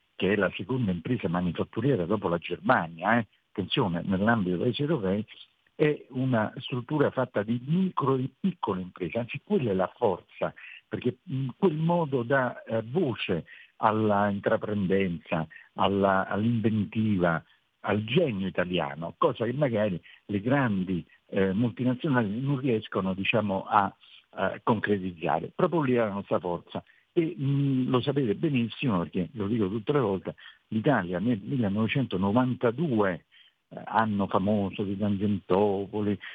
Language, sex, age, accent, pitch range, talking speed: Italian, male, 50-69, native, 100-135 Hz, 125 wpm